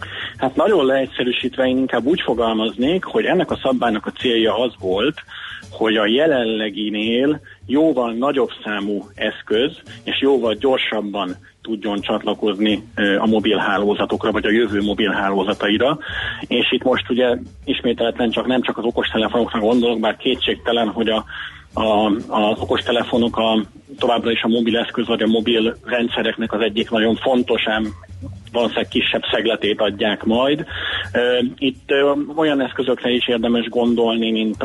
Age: 30-49